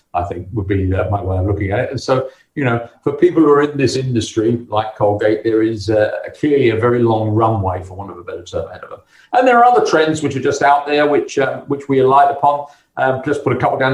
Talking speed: 265 wpm